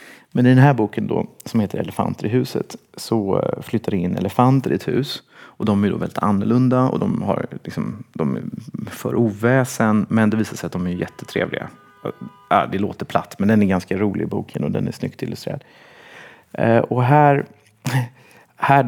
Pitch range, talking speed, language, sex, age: 100-130 Hz, 190 wpm, Swedish, male, 30-49